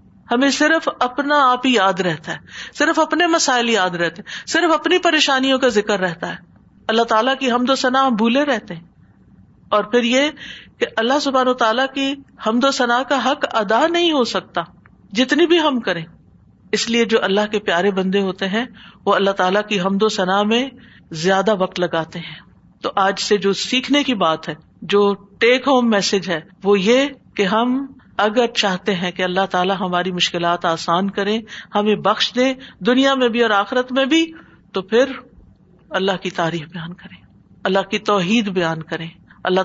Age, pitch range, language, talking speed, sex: 50-69, 185-245 Hz, Urdu, 185 wpm, female